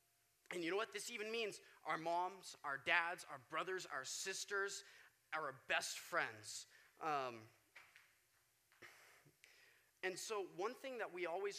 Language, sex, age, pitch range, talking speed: English, male, 20-39, 155-230 Hz, 135 wpm